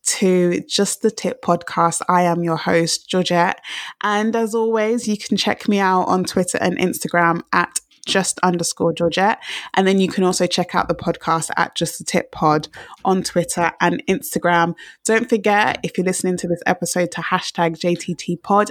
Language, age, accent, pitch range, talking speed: English, 20-39, British, 170-205 Hz, 180 wpm